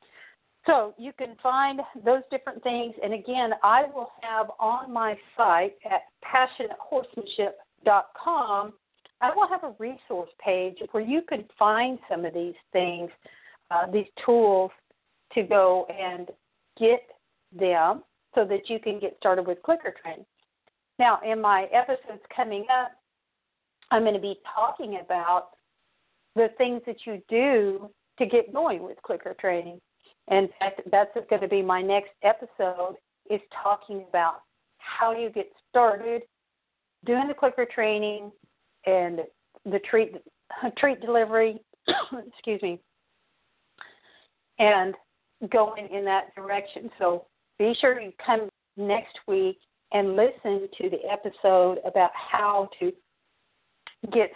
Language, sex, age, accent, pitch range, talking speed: English, female, 50-69, American, 195-245 Hz, 130 wpm